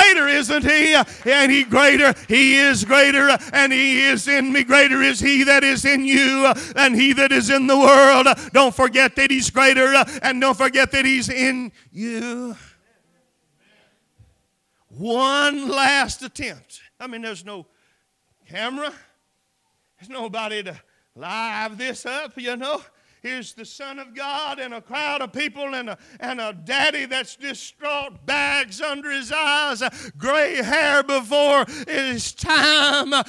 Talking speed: 150 wpm